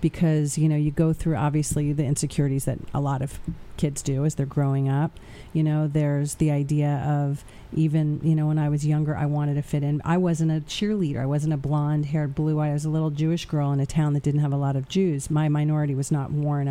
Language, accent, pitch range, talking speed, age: English, American, 145-160 Hz, 245 wpm, 40-59